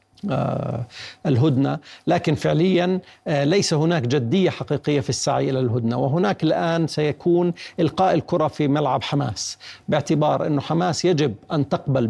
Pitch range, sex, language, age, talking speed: 130-160 Hz, male, Arabic, 50-69, 125 wpm